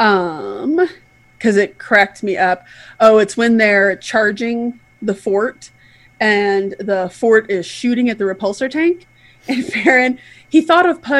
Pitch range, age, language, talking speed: 180-265 Hz, 20-39, English, 150 wpm